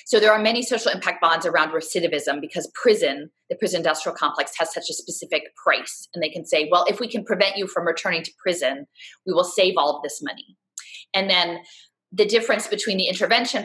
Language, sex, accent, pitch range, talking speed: English, female, American, 165-265 Hz, 210 wpm